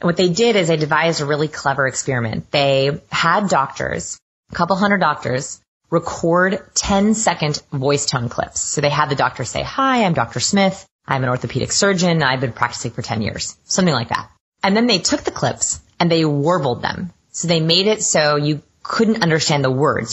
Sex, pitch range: female, 140-195 Hz